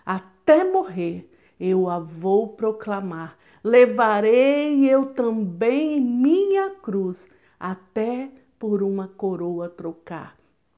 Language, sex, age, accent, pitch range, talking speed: Portuguese, female, 50-69, Brazilian, 195-265 Hz, 90 wpm